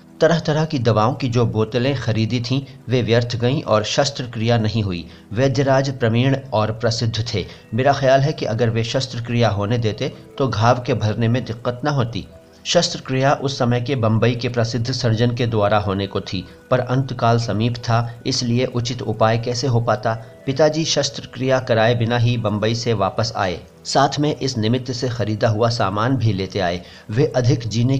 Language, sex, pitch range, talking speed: Hindi, male, 110-130 Hz, 180 wpm